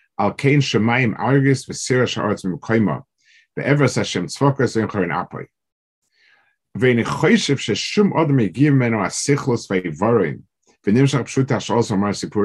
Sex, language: male, English